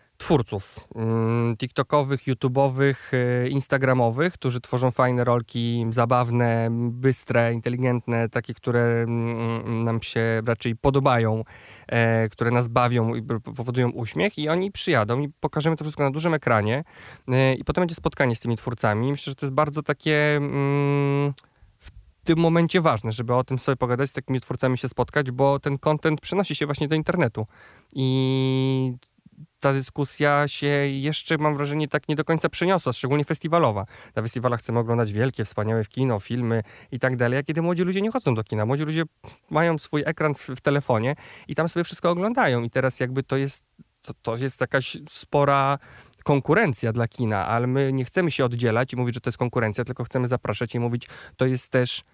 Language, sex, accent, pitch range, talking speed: Polish, male, native, 120-145 Hz, 170 wpm